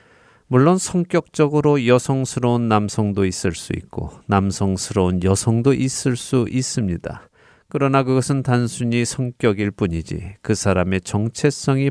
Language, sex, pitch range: Korean, male, 95-130 Hz